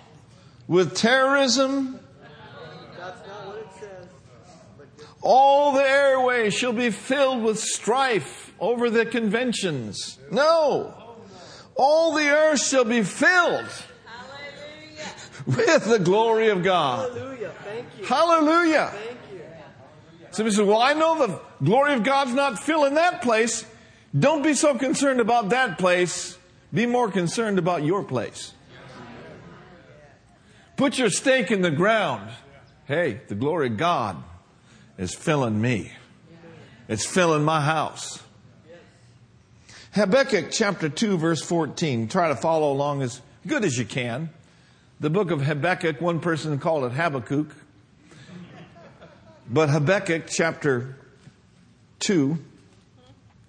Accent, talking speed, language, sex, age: American, 110 wpm, English, male, 50-69